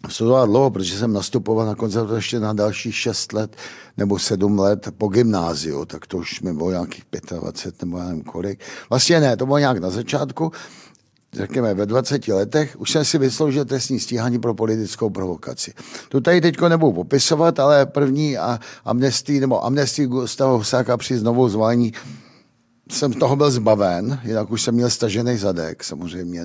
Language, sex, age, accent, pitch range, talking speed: Czech, male, 50-69, native, 100-130 Hz, 175 wpm